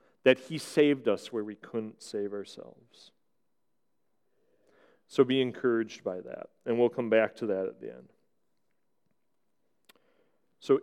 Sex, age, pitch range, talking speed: male, 40-59, 115-150 Hz, 135 wpm